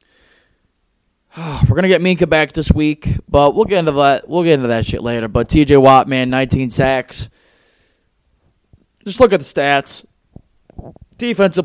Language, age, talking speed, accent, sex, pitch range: English, 20-39, 155 wpm, American, male, 135-170 Hz